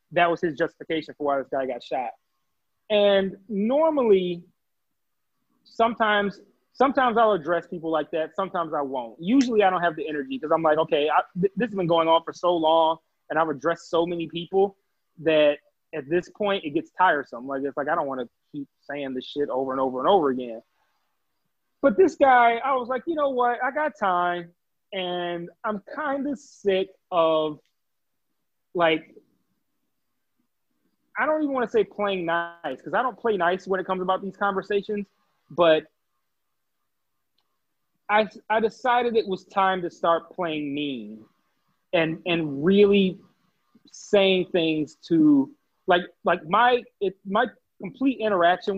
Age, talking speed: 30-49, 160 wpm